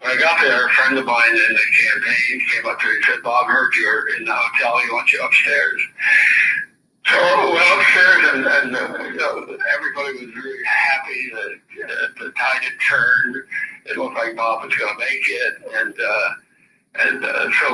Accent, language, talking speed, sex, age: American, English, 200 wpm, male, 60-79